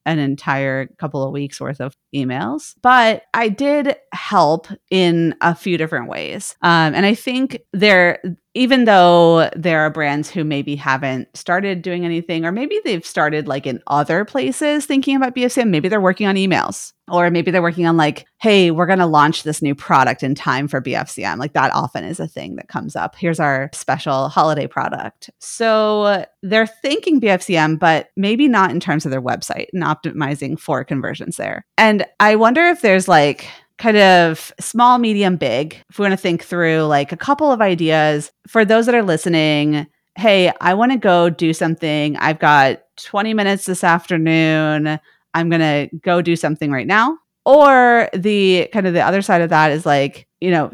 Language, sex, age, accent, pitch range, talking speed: English, female, 30-49, American, 155-210 Hz, 190 wpm